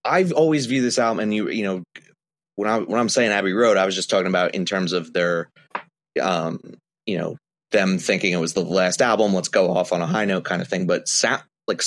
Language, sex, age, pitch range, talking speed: English, male, 30-49, 95-135 Hz, 245 wpm